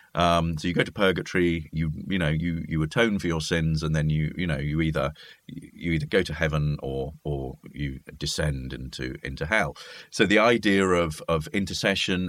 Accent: British